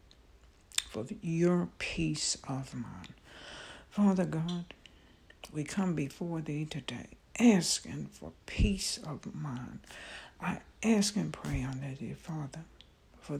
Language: English